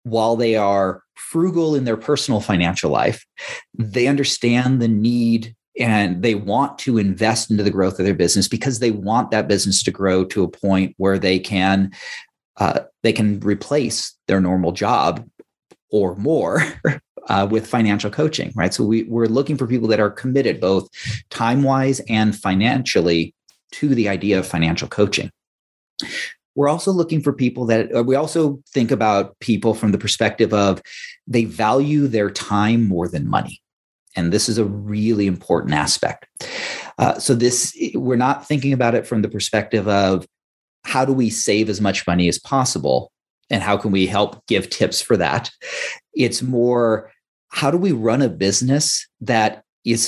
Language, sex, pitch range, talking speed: English, male, 100-125 Hz, 170 wpm